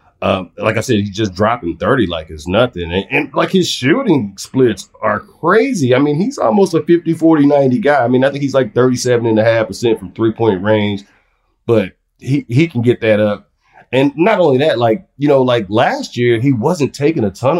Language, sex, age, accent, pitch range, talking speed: English, male, 30-49, American, 105-130 Hz, 200 wpm